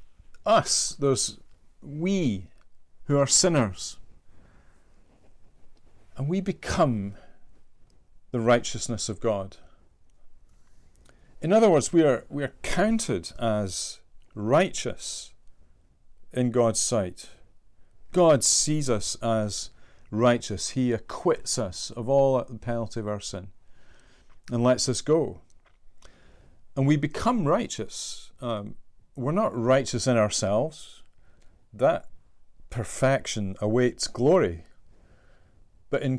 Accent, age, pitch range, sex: British, 40-59, 95-125 Hz, male